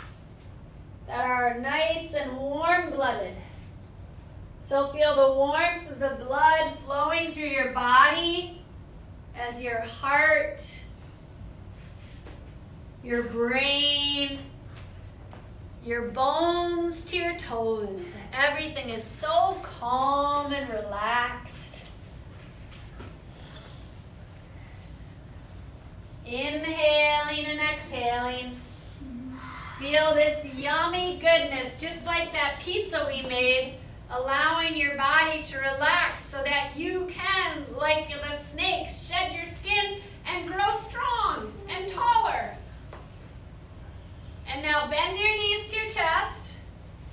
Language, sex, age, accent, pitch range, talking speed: English, female, 30-49, American, 245-335 Hz, 90 wpm